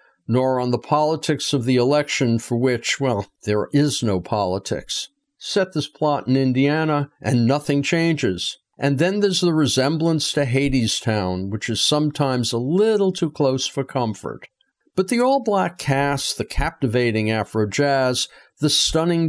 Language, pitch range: English, 115-150 Hz